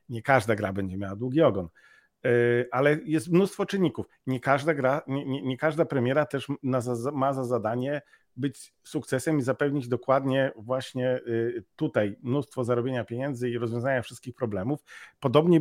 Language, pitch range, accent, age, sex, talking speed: Polish, 120-150 Hz, native, 50-69, male, 145 wpm